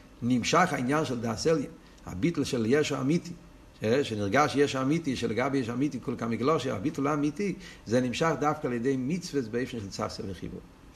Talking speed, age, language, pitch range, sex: 160 wpm, 50-69, Hebrew, 115-150 Hz, male